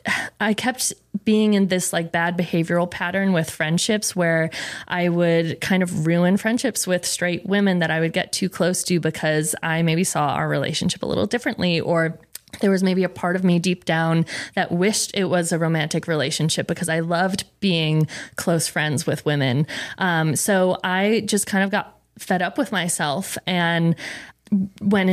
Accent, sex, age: American, female, 20-39